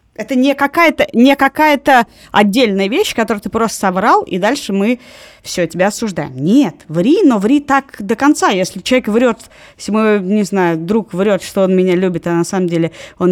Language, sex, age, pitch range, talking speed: Russian, female, 20-39, 180-230 Hz, 190 wpm